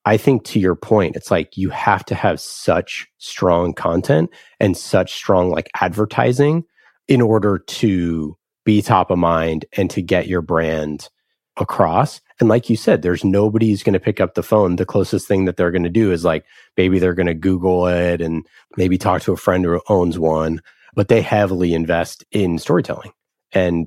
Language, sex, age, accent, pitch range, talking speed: English, male, 30-49, American, 85-110 Hz, 195 wpm